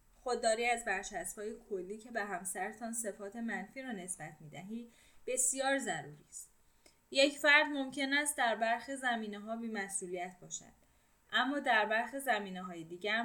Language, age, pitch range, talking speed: Persian, 10-29, 170-235 Hz, 130 wpm